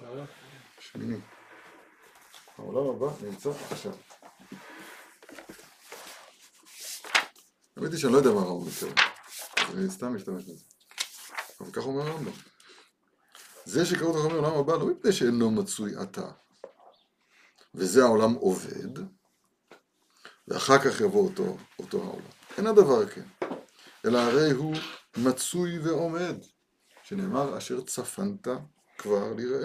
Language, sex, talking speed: Hebrew, male, 105 wpm